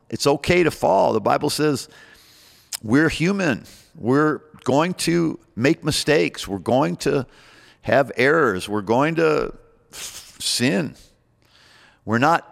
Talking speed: 120 wpm